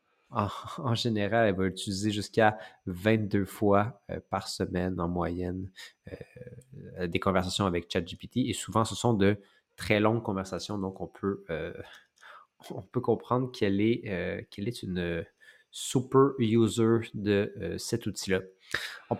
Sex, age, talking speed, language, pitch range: male, 30-49, 135 wpm, French, 95-120 Hz